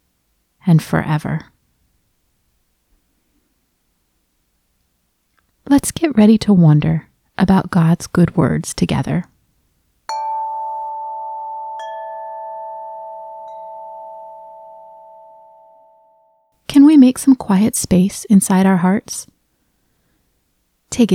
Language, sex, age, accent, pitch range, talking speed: English, female, 30-49, American, 160-220 Hz, 60 wpm